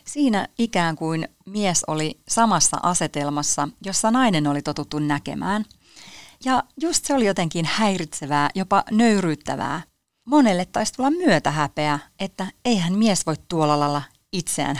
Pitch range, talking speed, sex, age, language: 150-195 Hz, 125 wpm, female, 30-49, Finnish